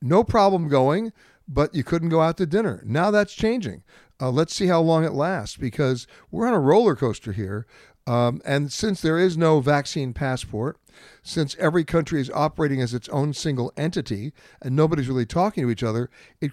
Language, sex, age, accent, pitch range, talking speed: English, male, 60-79, American, 135-175 Hz, 190 wpm